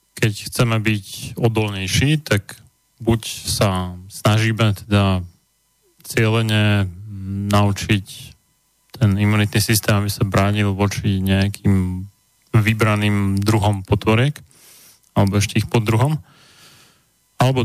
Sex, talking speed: male, 95 wpm